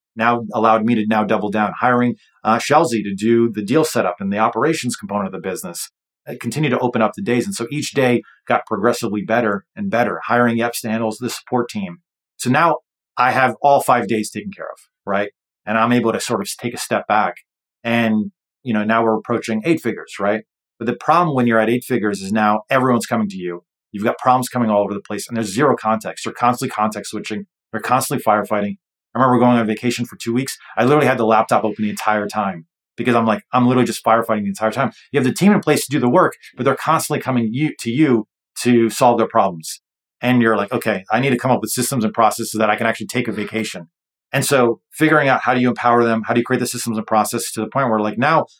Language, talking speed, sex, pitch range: English, 245 wpm, male, 105-125 Hz